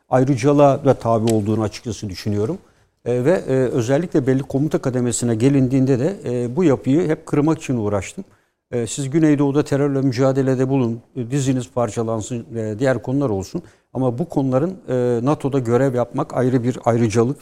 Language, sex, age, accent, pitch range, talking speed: Turkish, male, 60-79, native, 115-135 Hz, 135 wpm